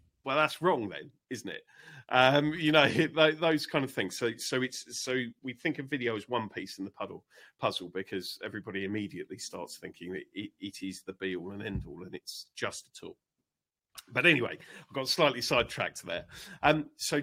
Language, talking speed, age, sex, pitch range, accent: English, 205 wpm, 40-59, male, 105-150 Hz, British